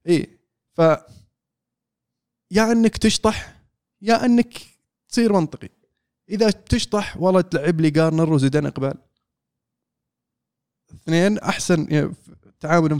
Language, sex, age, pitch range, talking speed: Arabic, male, 20-39, 150-195 Hz, 95 wpm